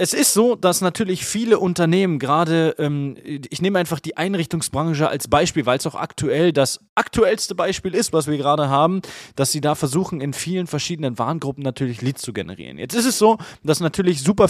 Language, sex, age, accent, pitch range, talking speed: German, male, 20-39, German, 130-170 Hz, 190 wpm